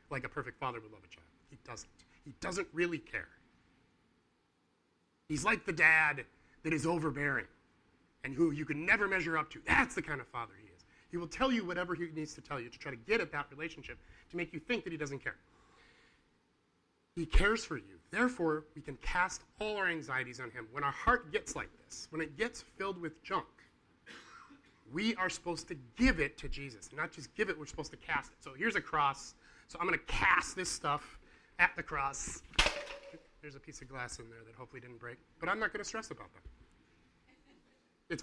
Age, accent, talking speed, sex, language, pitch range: 30-49, American, 215 wpm, male, English, 130-180 Hz